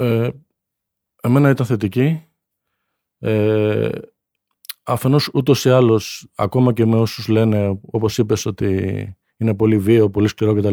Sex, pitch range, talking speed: male, 110-140 Hz, 135 wpm